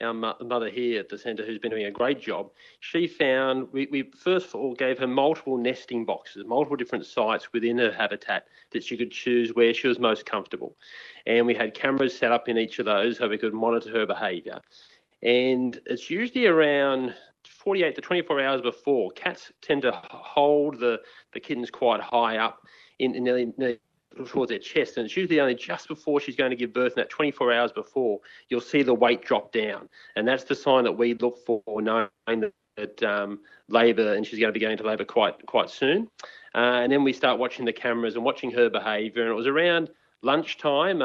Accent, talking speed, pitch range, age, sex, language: Australian, 210 wpm, 115-130 Hz, 40-59, male, English